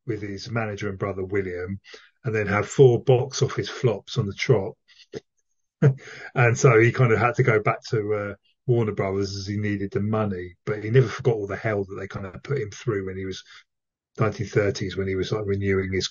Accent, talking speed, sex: British, 215 wpm, male